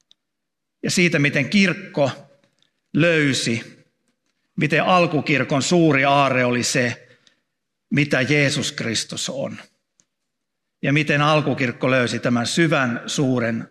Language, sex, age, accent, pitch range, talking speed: Finnish, male, 50-69, native, 125-160 Hz, 95 wpm